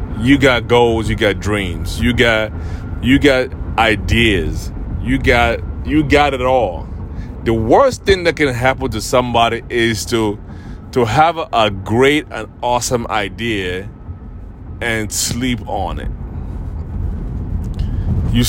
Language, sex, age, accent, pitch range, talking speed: English, male, 30-49, American, 90-125 Hz, 125 wpm